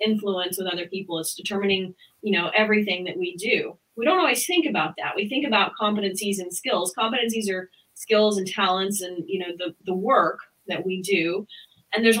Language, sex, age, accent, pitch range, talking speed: English, female, 30-49, American, 190-245 Hz, 195 wpm